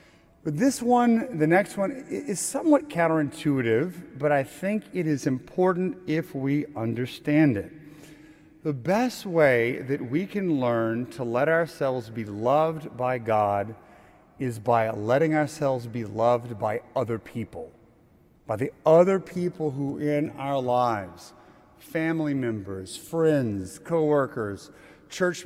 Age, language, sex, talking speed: 40-59, English, male, 130 wpm